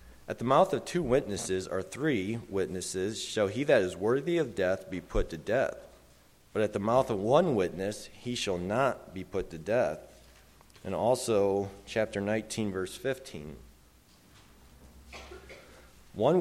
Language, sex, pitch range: English, male, 75-110 Hz